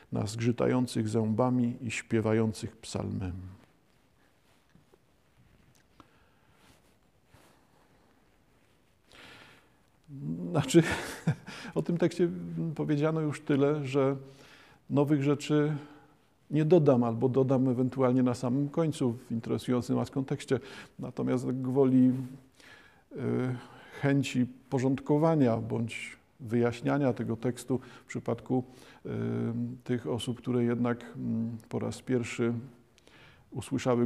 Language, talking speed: Polish, 80 wpm